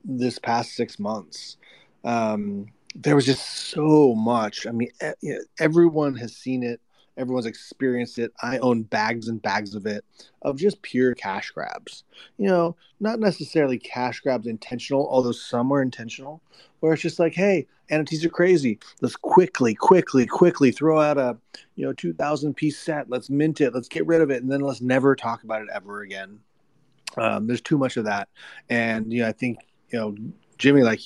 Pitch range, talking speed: 115-140 Hz, 180 wpm